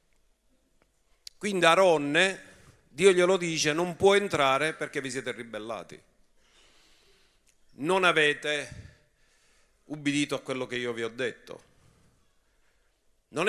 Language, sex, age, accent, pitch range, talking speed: Italian, male, 50-69, native, 125-170 Hz, 100 wpm